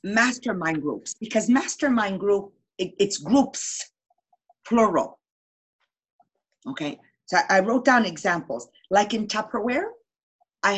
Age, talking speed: 40-59, 100 wpm